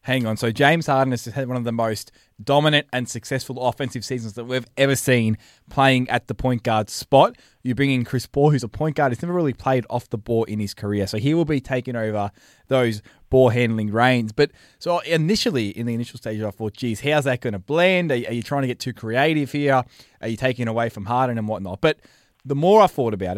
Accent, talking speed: Australian, 240 wpm